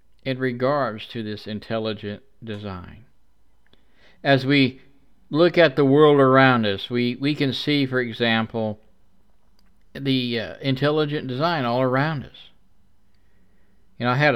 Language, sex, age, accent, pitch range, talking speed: English, male, 50-69, American, 105-140 Hz, 130 wpm